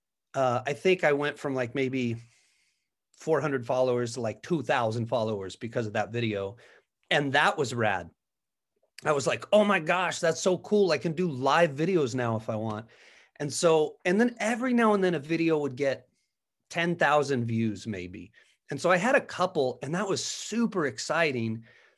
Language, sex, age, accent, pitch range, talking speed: English, male, 30-49, American, 130-175 Hz, 180 wpm